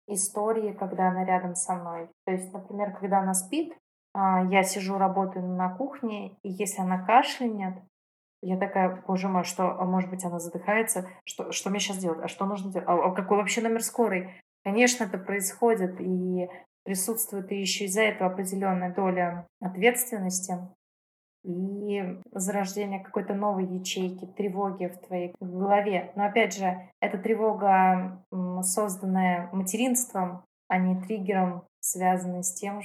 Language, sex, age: Russian, female, 20-39